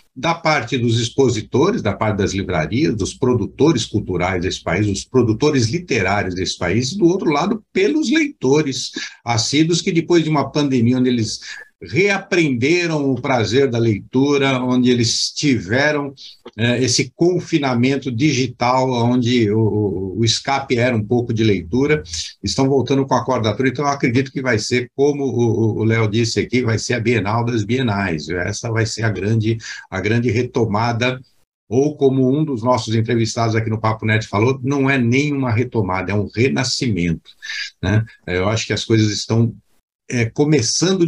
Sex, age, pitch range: male, 60-79, 110-135 Hz